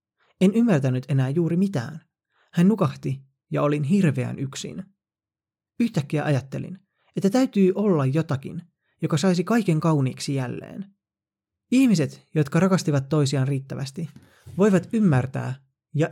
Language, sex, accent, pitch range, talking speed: Finnish, male, native, 135-180 Hz, 110 wpm